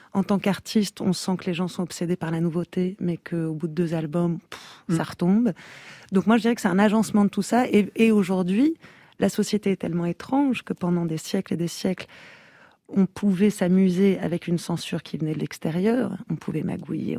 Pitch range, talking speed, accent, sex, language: 175-205 Hz, 210 wpm, French, female, French